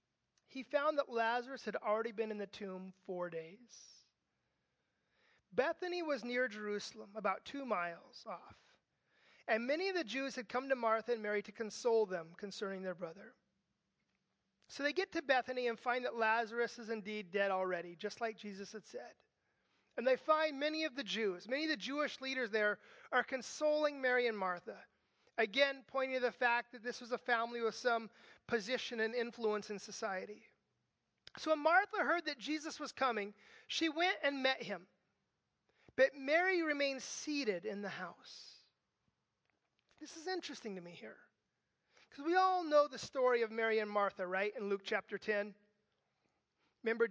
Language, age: English, 30-49